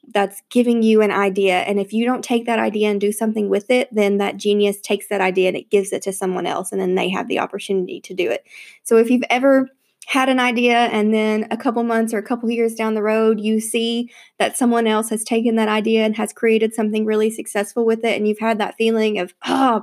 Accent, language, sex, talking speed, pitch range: American, English, female, 250 wpm, 215-250 Hz